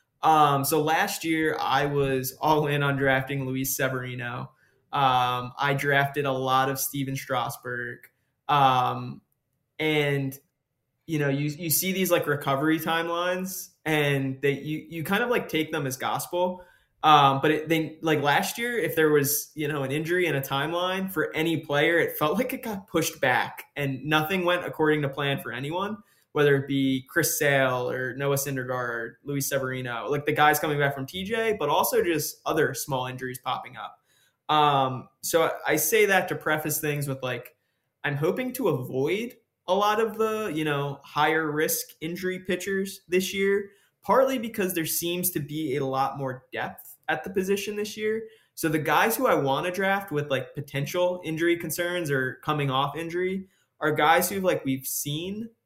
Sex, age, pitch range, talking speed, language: male, 20-39, 140-180 Hz, 180 wpm, English